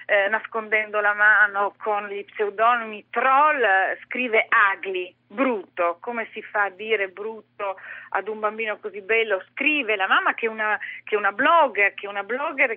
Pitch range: 205-265 Hz